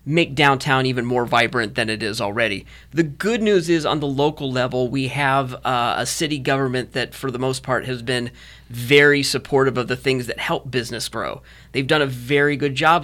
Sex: male